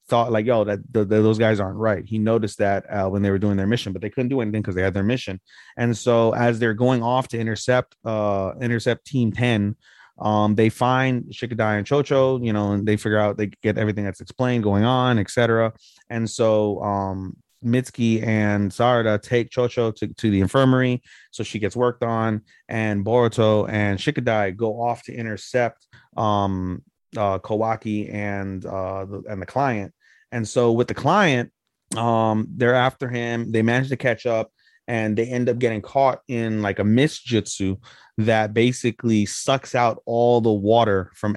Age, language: 30-49, English